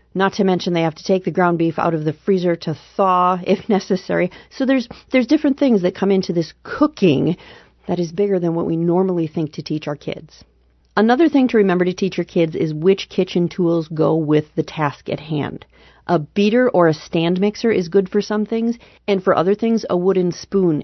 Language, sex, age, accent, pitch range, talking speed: English, female, 40-59, American, 160-205 Hz, 220 wpm